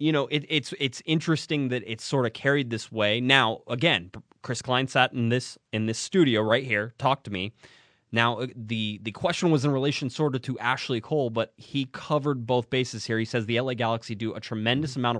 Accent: American